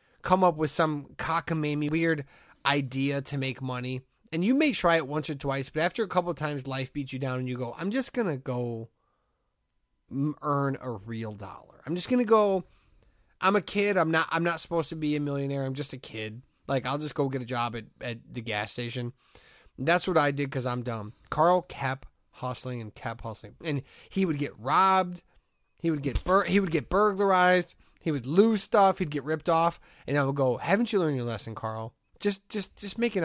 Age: 30-49